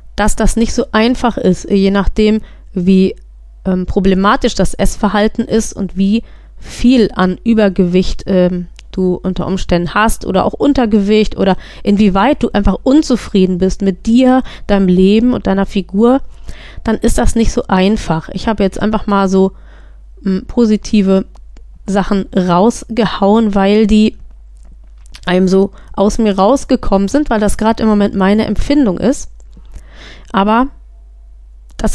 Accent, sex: German, female